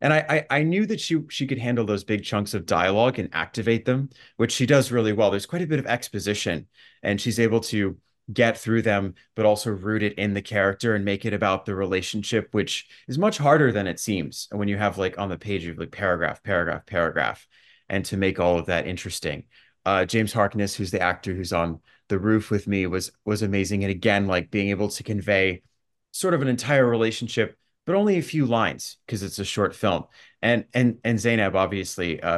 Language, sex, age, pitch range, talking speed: English, male, 30-49, 100-115 Hz, 220 wpm